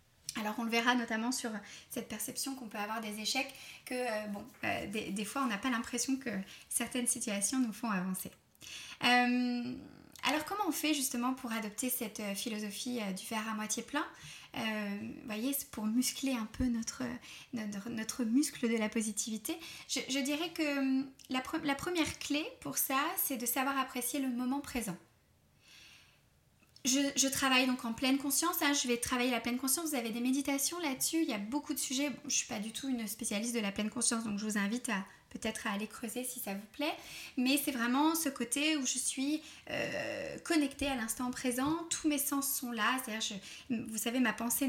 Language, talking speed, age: French, 205 wpm, 20-39